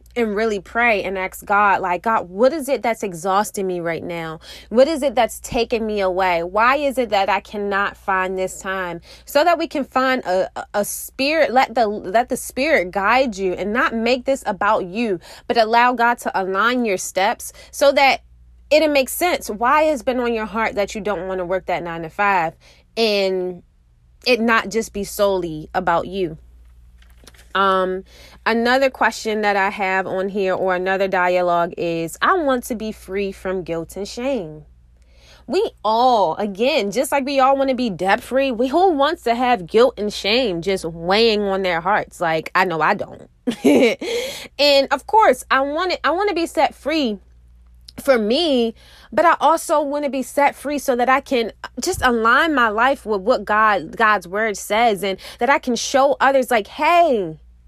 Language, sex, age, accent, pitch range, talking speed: English, female, 20-39, American, 185-260 Hz, 185 wpm